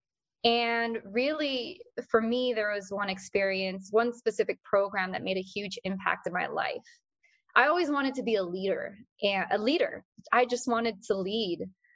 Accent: American